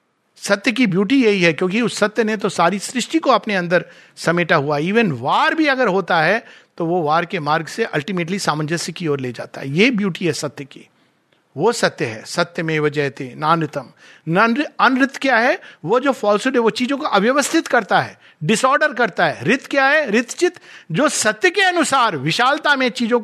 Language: Hindi